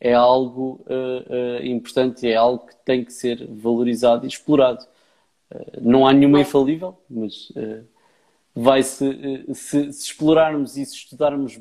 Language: Portuguese